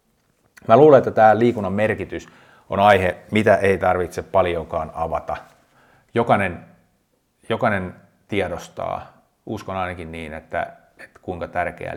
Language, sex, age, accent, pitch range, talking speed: Finnish, male, 30-49, native, 90-125 Hz, 115 wpm